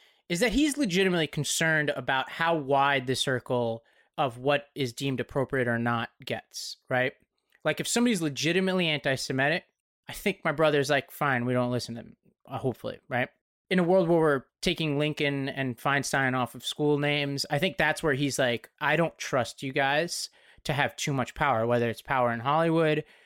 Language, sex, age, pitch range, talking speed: English, male, 30-49, 130-165 Hz, 185 wpm